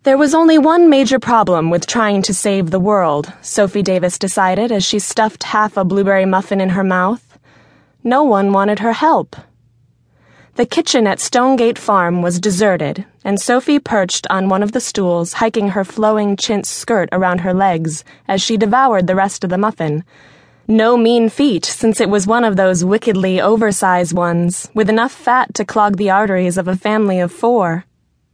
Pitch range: 180-230 Hz